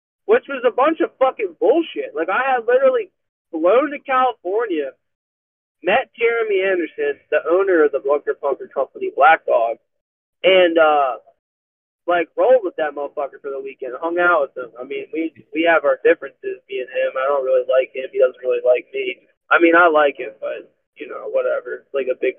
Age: 20-39